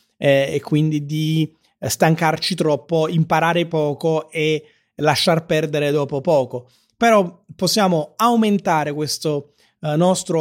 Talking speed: 100 wpm